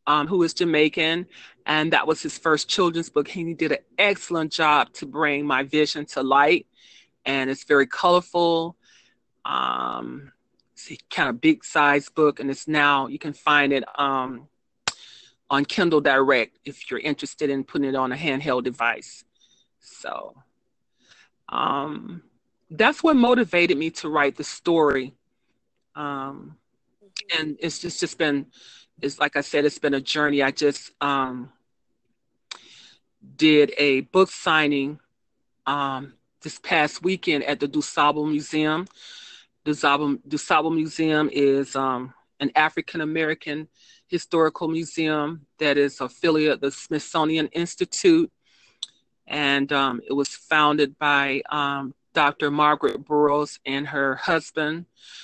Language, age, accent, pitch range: English, 40-59, American, 140-155 Hz